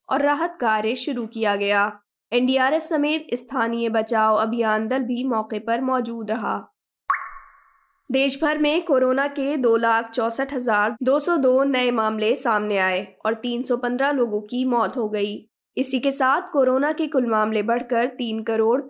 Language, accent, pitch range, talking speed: Hindi, native, 215-265 Hz, 135 wpm